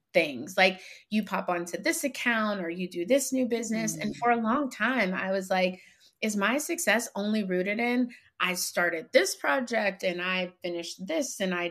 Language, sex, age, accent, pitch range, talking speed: English, female, 30-49, American, 180-230 Hz, 190 wpm